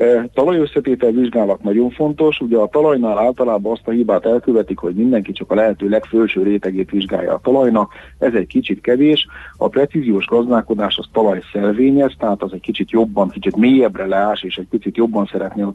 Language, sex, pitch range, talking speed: Hungarian, male, 100-125 Hz, 180 wpm